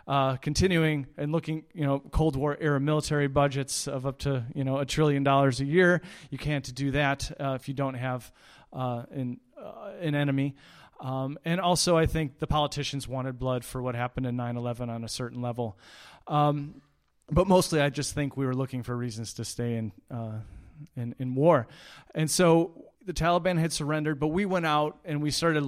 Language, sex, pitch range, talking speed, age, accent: English, male, 130-150 Hz, 205 wpm, 30-49, American